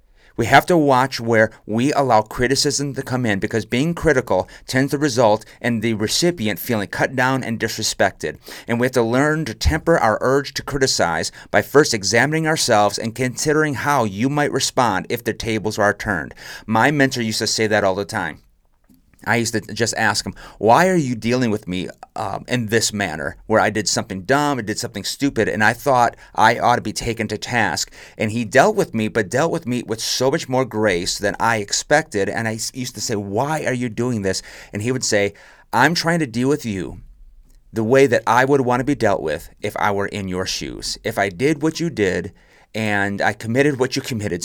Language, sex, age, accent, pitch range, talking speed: English, male, 30-49, American, 100-130 Hz, 215 wpm